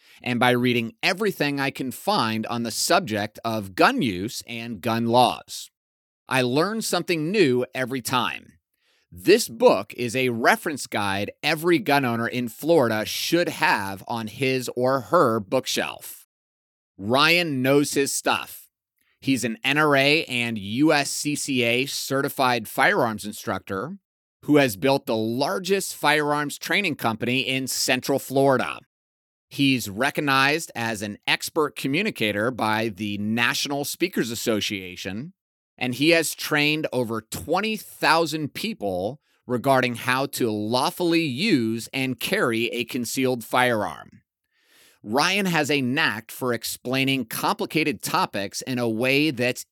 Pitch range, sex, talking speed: 115-145 Hz, male, 125 wpm